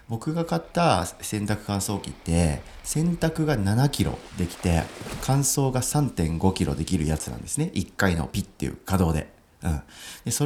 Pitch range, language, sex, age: 85-130 Hz, Japanese, male, 40-59